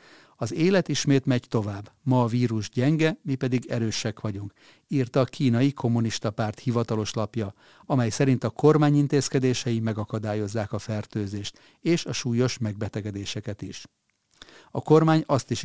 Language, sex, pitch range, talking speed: Hungarian, male, 110-135 Hz, 140 wpm